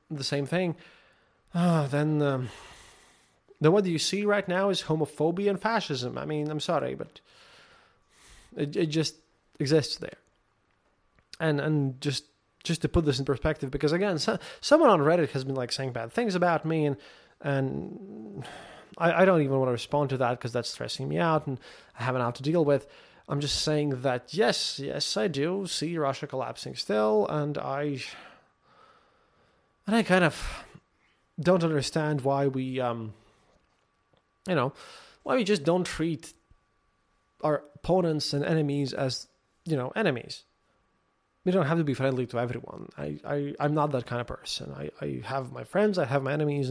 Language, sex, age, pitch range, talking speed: English, male, 20-39, 130-175 Hz, 175 wpm